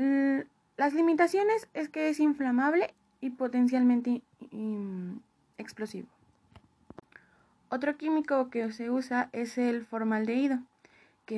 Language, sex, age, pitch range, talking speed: Spanish, female, 20-39, 215-280 Hz, 105 wpm